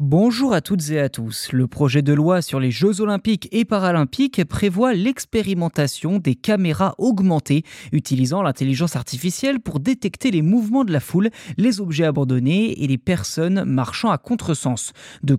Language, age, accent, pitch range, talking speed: French, 20-39, French, 140-210 Hz, 160 wpm